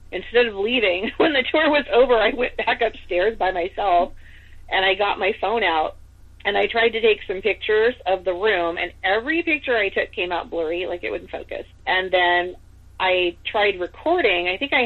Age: 30-49